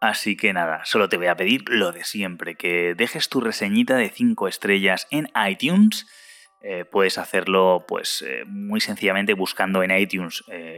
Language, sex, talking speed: Spanish, male, 175 wpm